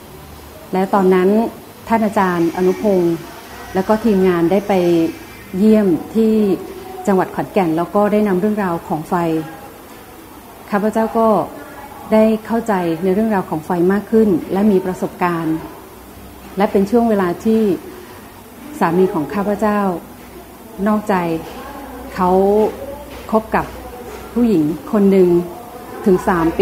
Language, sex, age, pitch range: Thai, female, 30-49, 175-220 Hz